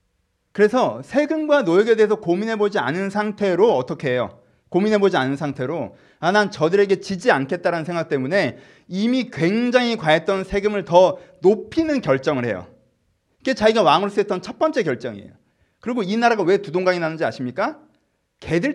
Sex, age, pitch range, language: male, 30-49, 165-235 Hz, Korean